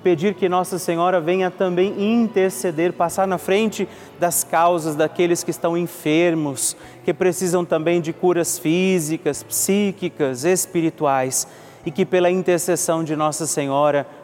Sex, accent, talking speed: male, Brazilian, 130 wpm